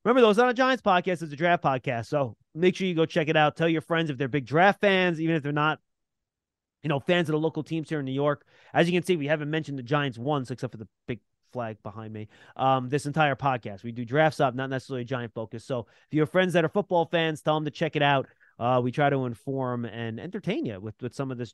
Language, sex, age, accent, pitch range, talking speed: English, male, 30-49, American, 140-185 Hz, 280 wpm